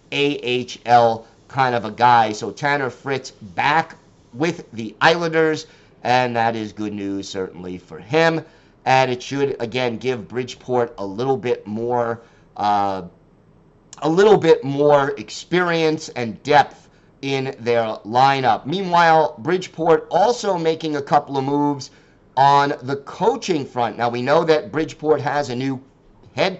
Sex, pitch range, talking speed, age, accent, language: male, 120-155 Hz, 140 wpm, 50-69, American, English